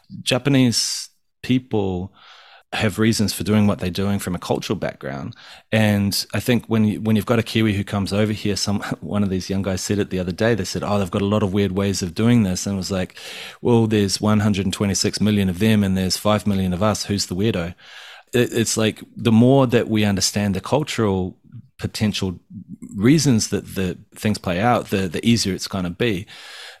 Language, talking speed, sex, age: English, 210 wpm, male, 30-49